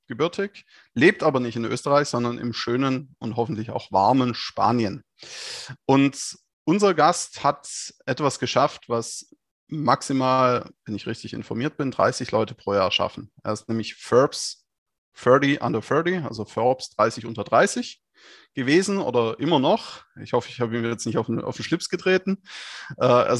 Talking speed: 160 wpm